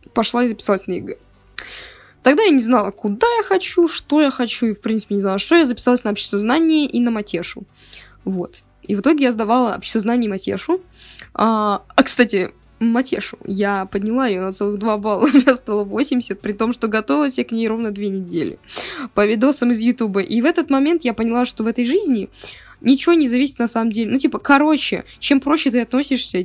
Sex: female